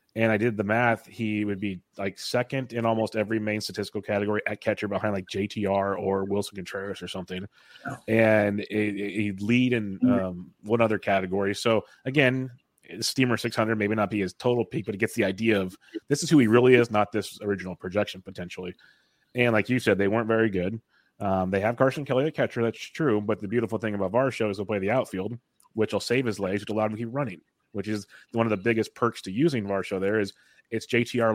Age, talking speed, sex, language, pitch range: 30-49, 220 wpm, male, English, 100-115 Hz